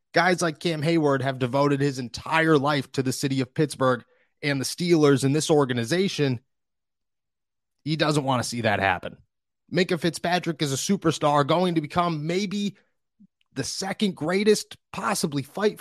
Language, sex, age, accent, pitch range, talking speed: English, male, 30-49, American, 125-175 Hz, 155 wpm